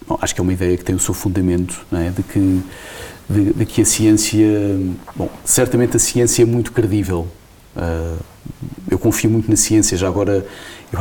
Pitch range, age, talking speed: 95-115 Hz, 40-59, 190 wpm